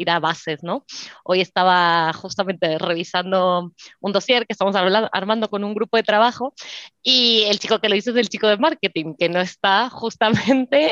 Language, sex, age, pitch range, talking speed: Spanish, female, 20-39, 180-225 Hz, 180 wpm